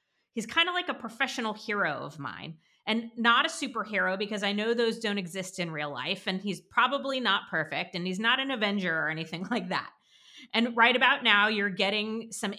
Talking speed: 205 wpm